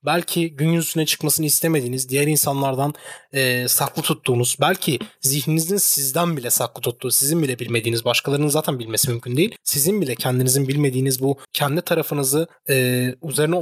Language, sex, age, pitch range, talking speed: Turkish, male, 30-49, 130-165 Hz, 145 wpm